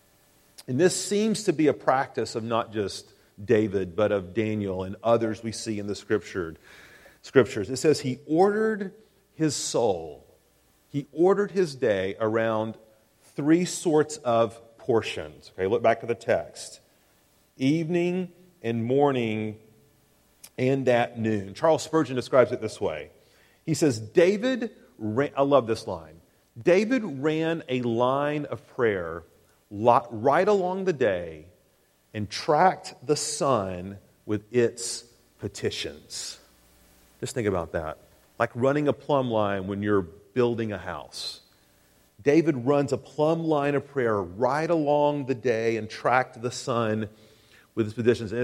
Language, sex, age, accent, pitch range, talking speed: English, male, 40-59, American, 110-155 Hz, 140 wpm